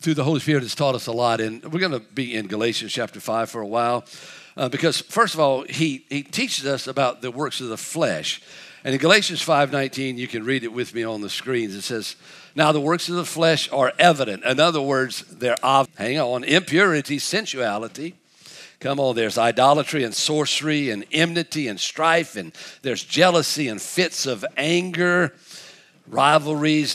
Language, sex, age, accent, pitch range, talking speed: English, male, 50-69, American, 115-160 Hz, 190 wpm